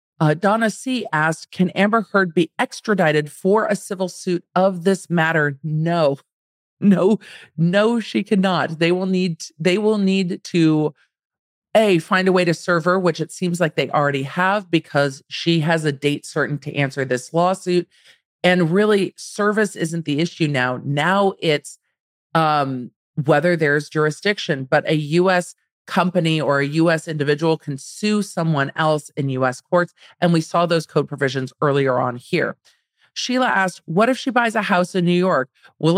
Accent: American